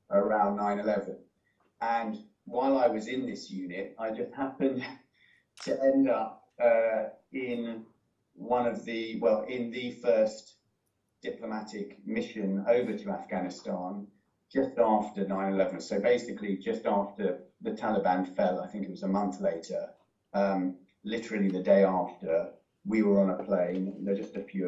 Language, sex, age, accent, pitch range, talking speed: English, male, 30-49, British, 100-115 Hz, 150 wpm